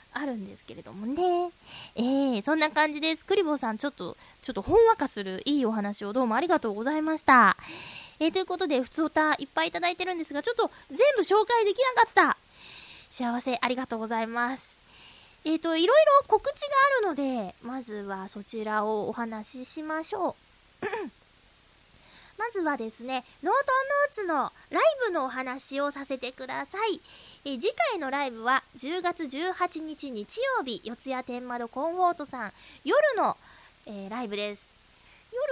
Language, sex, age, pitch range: Japanese, female, 20-39, 230-330 Hz